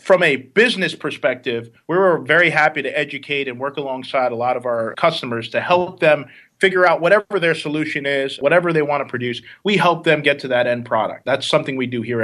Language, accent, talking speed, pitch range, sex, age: English, American, 215 wpm, 125-165 Hz, male, 30-49